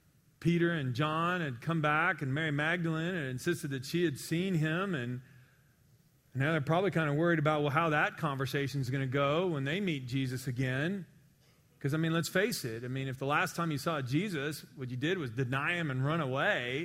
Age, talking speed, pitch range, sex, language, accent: 40-59, 220 wpm, 135-160 Hz, male, English, American